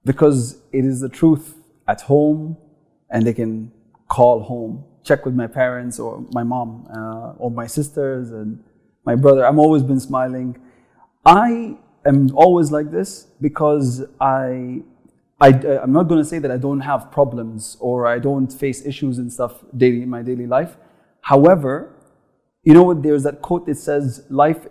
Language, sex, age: English, male, 30-49